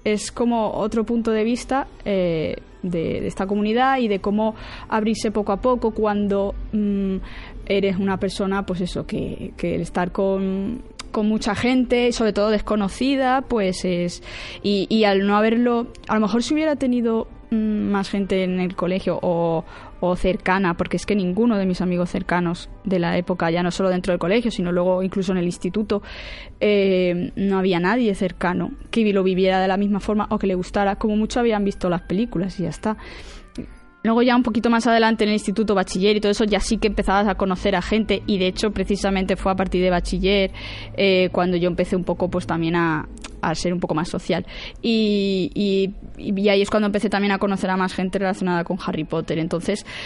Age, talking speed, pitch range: 20-39, 200 wpm, 180-215 Hz